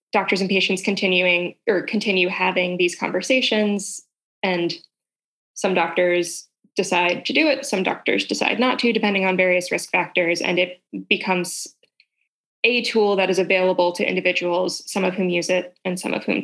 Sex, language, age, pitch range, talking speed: female, English, 10-29, 180-215 Hz, 165 wpm